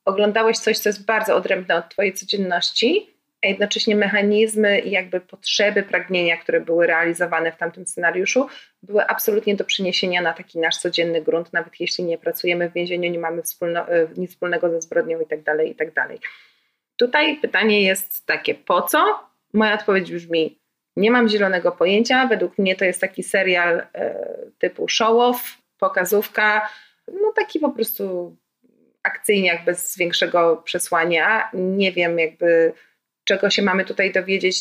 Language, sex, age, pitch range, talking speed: Polish, female, 30-49, 180-230 Hz, 145 wpm